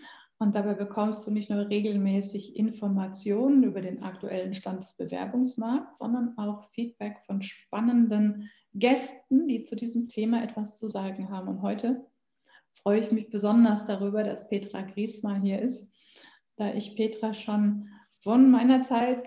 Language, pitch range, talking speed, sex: German, 215-255 Hz, 145 wpm, female